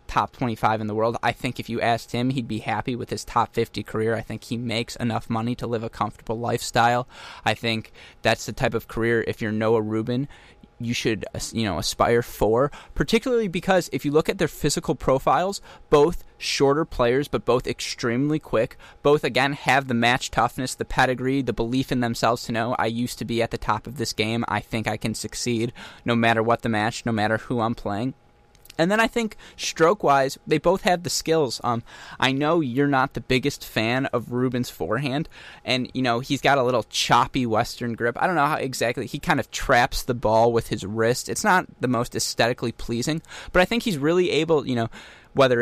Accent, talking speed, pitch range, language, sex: American, 215 wpm, 115-140 Hz, English, male